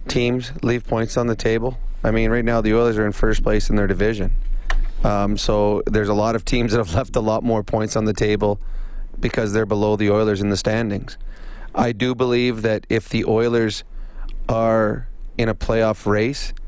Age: 30-49